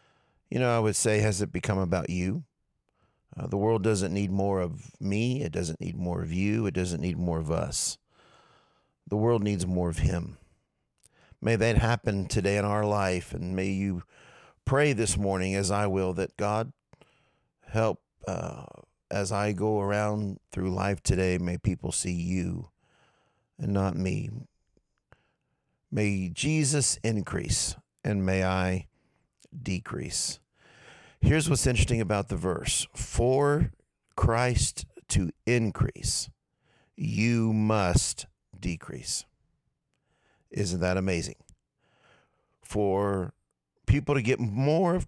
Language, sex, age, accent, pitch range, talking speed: English, male, 50-69, American, 95-115 Hz, 130 wpm